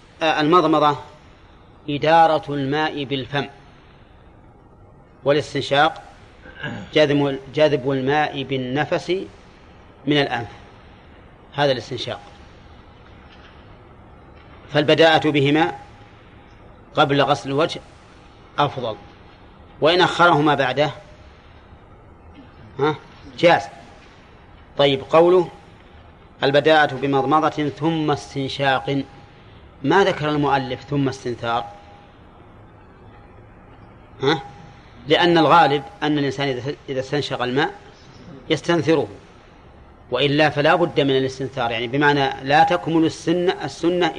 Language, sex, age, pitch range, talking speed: Arabic, male, 30-49, 100-150 Hz, 75 wpm